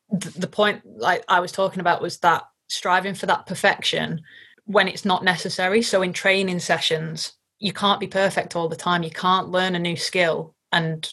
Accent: British